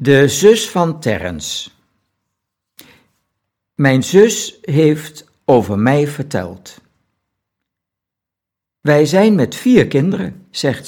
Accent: Dutch